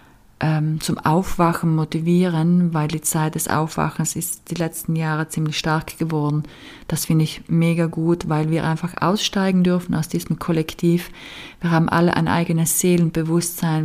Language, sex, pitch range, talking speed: German, female, 155-170 Hz, 145 wpm